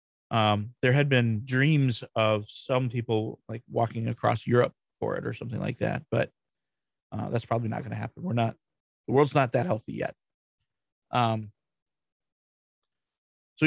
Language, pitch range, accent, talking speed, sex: English, 110-140 Hz, American, 155 wpm, male